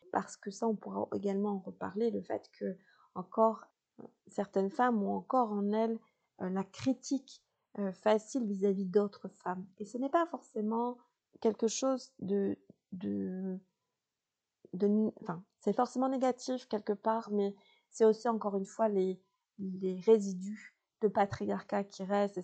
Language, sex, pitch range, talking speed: French, female, 195-225 Hz, 145 wpm